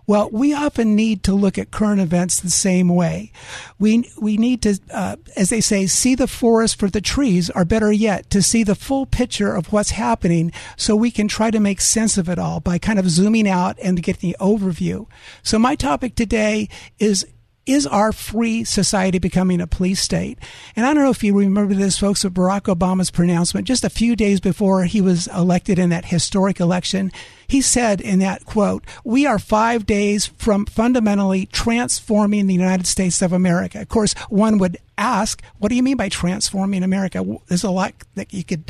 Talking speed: 200 wpm